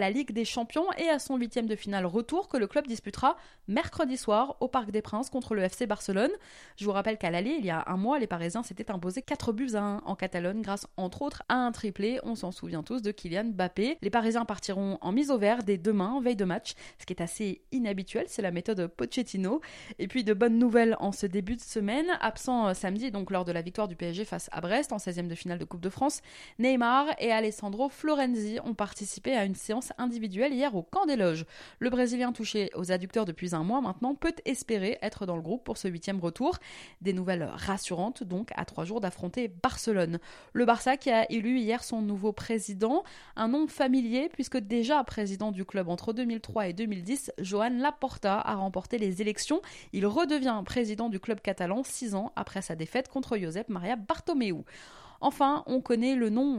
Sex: female